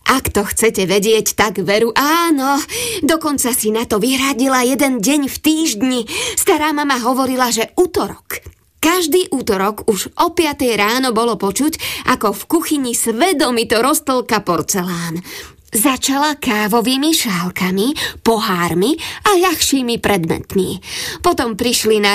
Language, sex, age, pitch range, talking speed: Slovak, female, 20-39, 205-295 Hz, 120 wpm